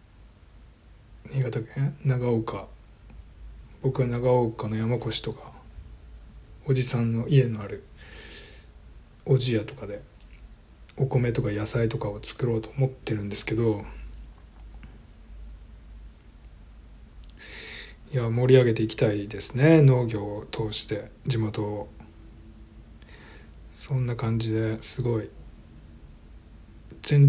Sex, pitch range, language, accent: male, 105-130 Hz, Japanese, native